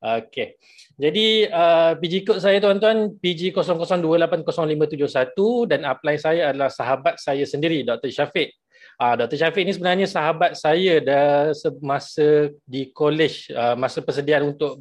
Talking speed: 130 wpm